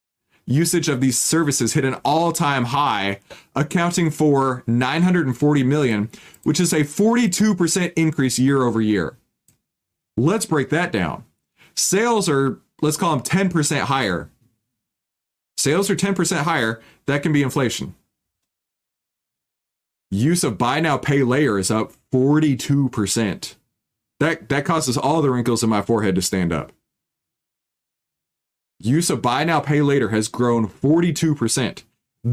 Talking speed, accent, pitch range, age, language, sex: 130 wpm, American, 120-170 Hz, 30-49, English, male